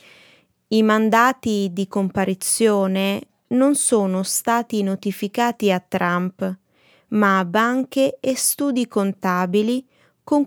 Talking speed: 95 wpm